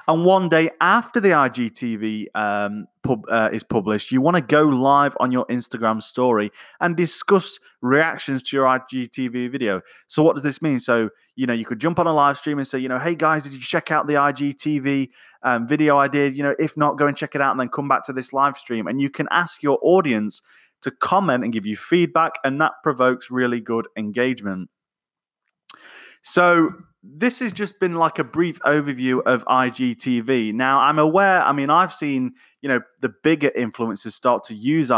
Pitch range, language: 120-155 Hz, English